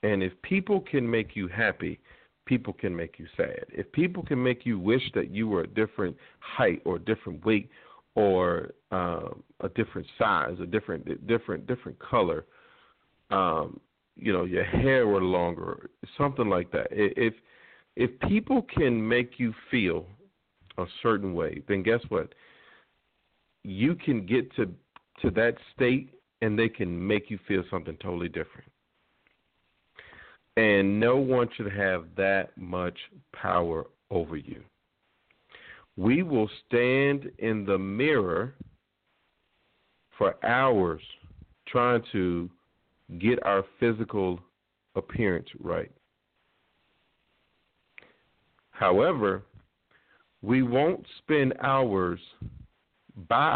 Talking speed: 120 wpm